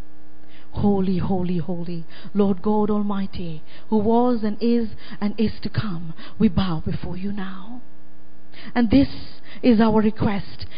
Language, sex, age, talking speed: English, female, 40-59, 135 wpm